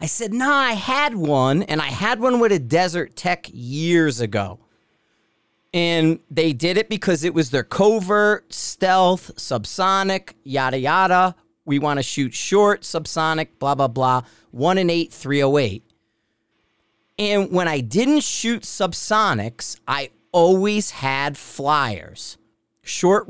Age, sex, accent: 40-59, male, American